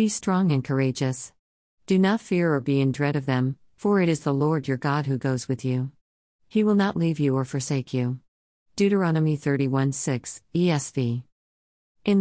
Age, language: 40-59, English